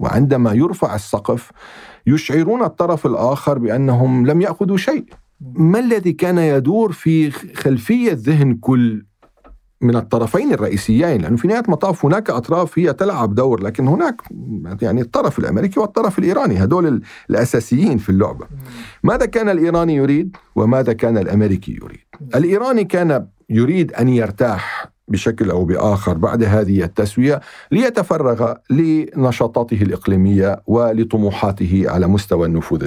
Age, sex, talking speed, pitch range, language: 50-69, male, 120 wpm, 100-155 Hz, Arabic